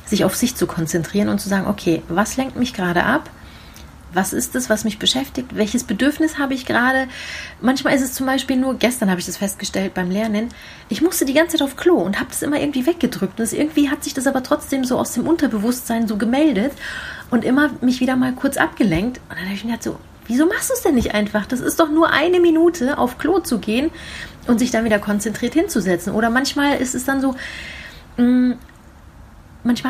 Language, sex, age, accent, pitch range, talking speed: German, female, 30-49, German, 215-275 Hz, 215 wpm